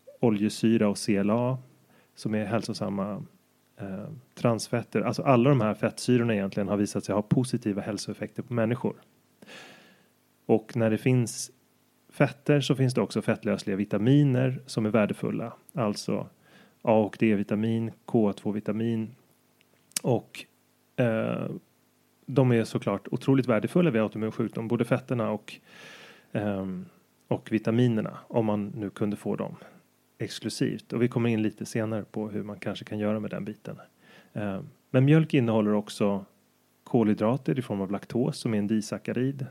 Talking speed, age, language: 135 wpm, 30-49, Swedish